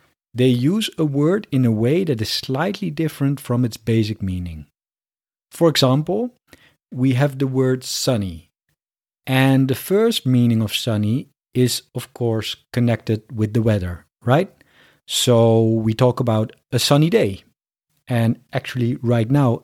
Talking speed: 145 wpm